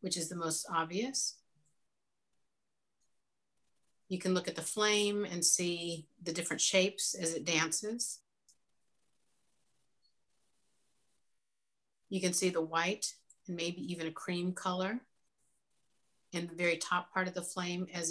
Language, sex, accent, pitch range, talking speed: English, female, American, 165-185 Hz, 130 wpm